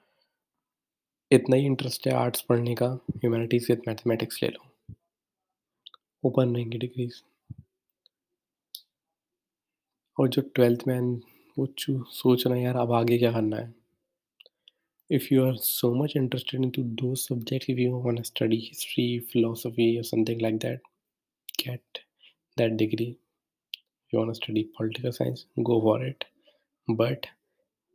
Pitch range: 115-125 Hz